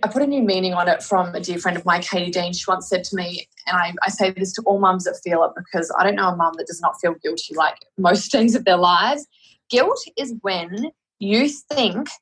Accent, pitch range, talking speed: Australian, 185-260 Hz, 260 wpm